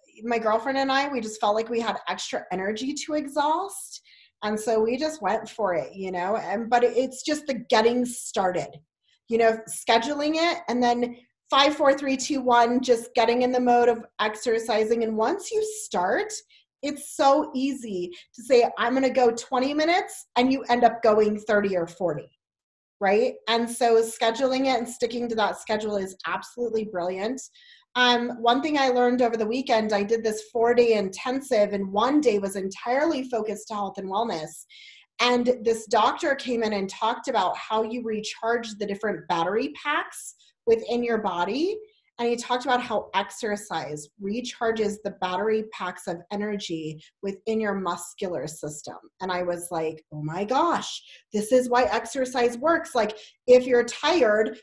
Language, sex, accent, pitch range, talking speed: English, female, American, 205-255 Hz, 170 wpm